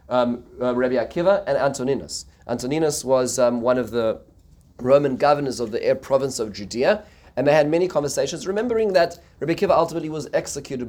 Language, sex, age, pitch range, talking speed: English, male, 30-49, 120-150 Hz, 175 wpm